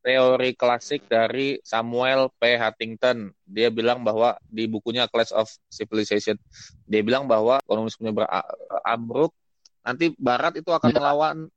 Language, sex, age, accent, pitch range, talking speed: Indonesian, male, 20-39, native, 105-130 Hz, 125 wpm